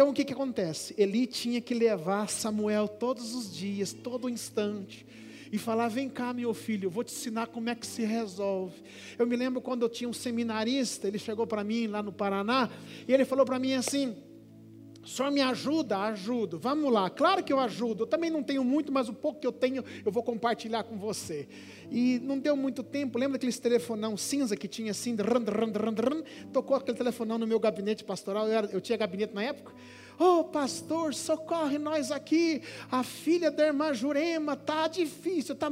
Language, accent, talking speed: Portuguese, Brazilian, 200 wpm